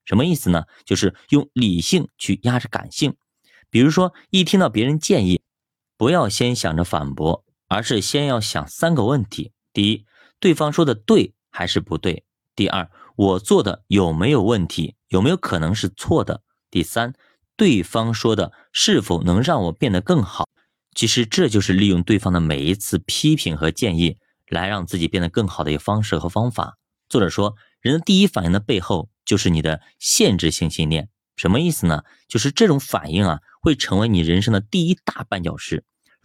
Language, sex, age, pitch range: Chinese, male, 30-49, 85-120 Hz